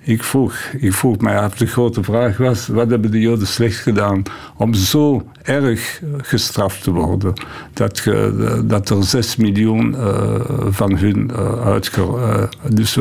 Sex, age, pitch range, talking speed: male, 60-79, 105-125 Hz, 150 wpm